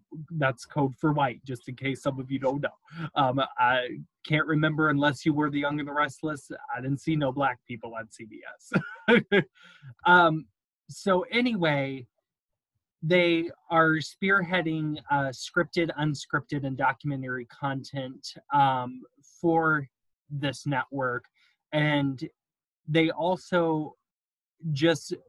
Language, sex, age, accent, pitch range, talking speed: English, male, 20-39, American, 135-165 Hz, 125 wpm